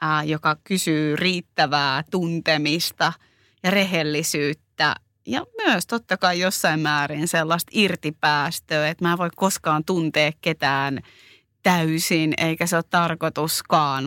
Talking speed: 110 wpm